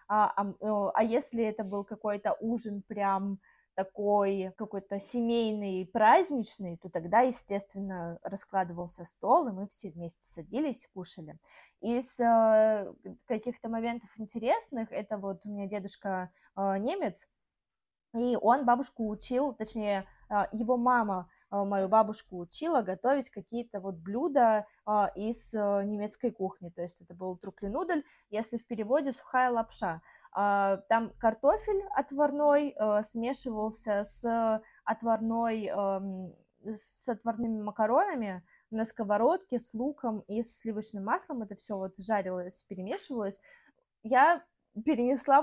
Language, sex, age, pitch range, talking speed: Russian, female, 20-39, 200-240 Hz, 120 wpm